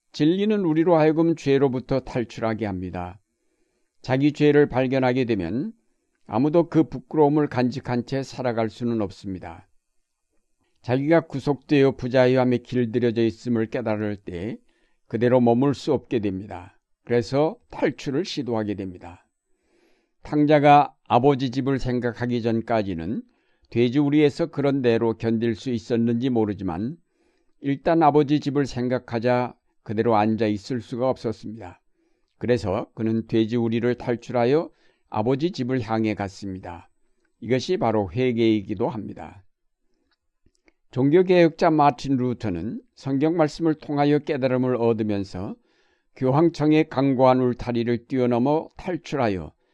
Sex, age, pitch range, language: male, 60-79, 115-145 Hz, Korean